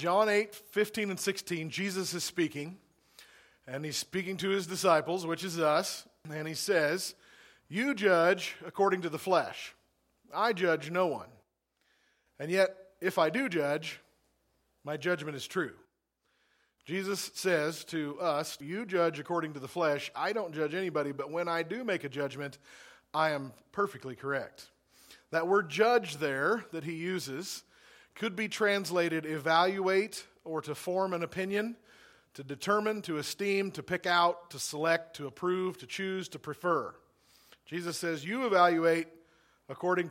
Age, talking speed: 40-59, 150 wpm